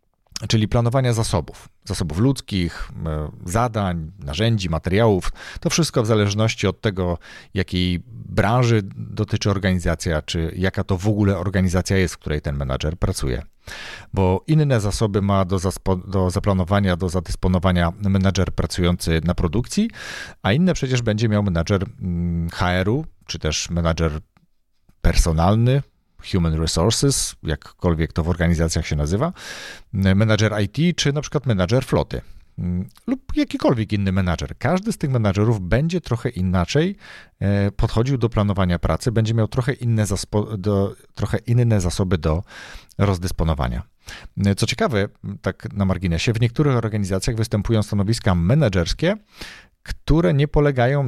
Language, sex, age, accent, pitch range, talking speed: Polish, male, 40-59, native, 90-115 Hz, 130 wpm